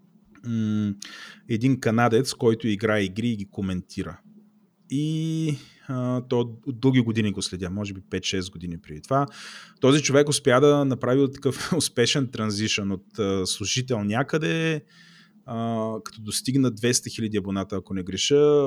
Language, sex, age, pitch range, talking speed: Bulgarian, male, 30-49, 105-140 Hz, 140 wpm